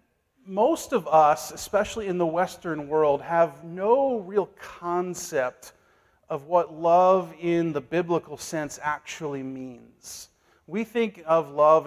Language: English